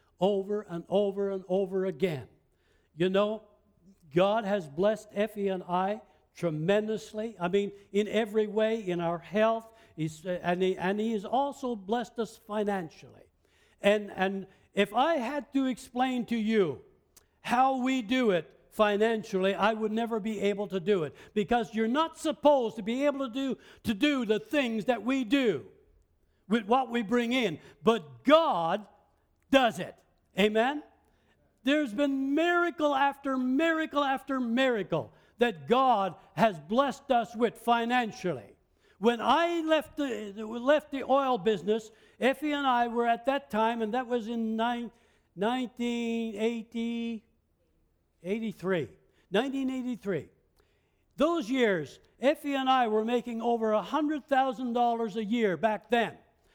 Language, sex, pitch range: English, male, 205-255 Hz